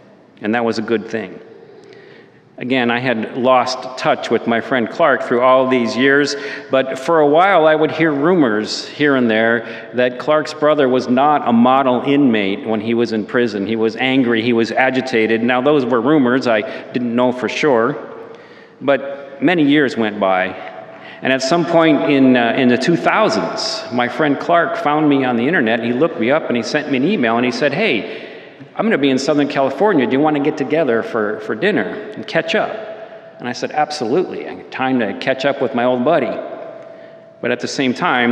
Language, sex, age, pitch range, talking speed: English, male, 40-59, 115-150 Hz, 205 wpm